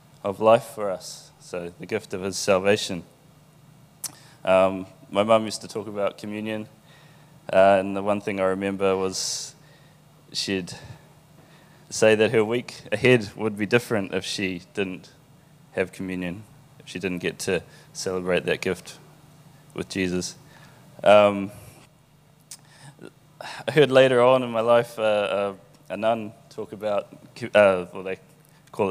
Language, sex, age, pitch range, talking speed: English, male, 20-39, 100-150 Hz, 140 wpm